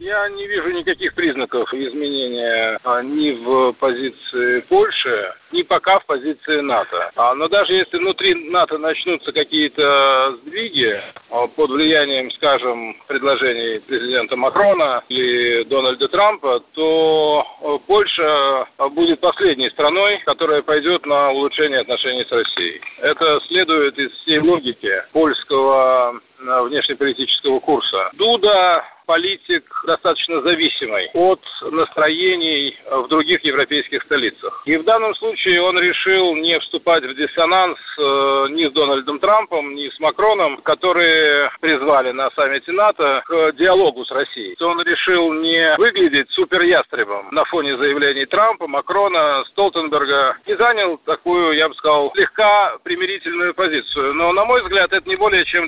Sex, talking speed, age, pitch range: male, 125 wpm, 50-69, 145-240 Hz